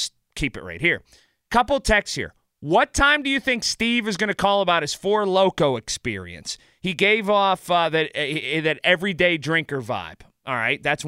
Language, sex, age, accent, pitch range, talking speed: English, male, 30-49, American, 145-200 Hz, 190 wpm